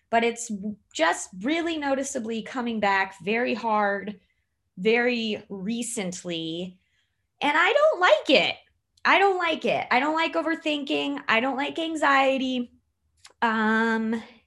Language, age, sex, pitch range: English, 20-39, female, 195-270 Hz